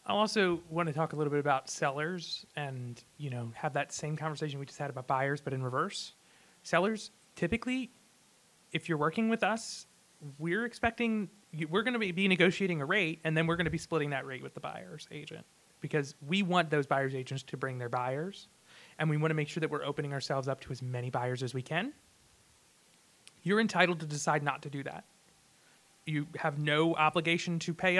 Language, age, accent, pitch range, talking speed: English, 30-49, American, 145-175 Hz, 195 wpm